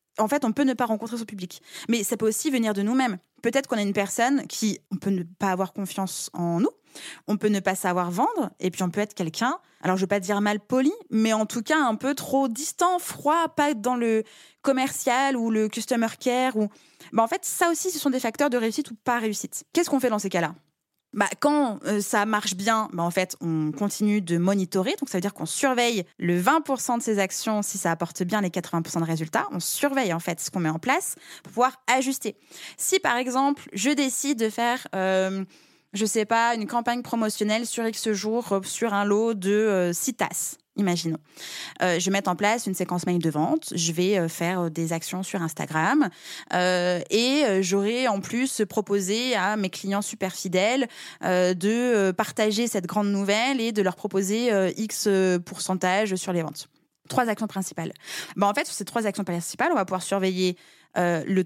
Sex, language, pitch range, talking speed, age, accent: female, French, 185-240 Hz, 215 wpm, 20-39, French